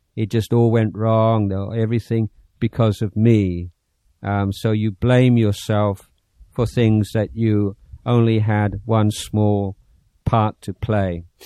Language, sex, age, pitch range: Thai, male, 50-69, 105-120 Hz